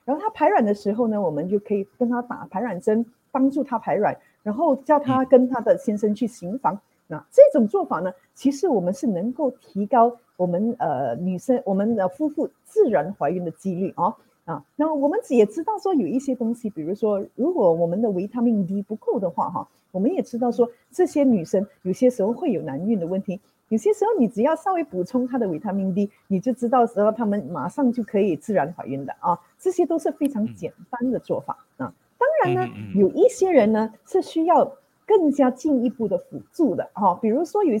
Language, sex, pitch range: Chinese, female, 195-280 Hz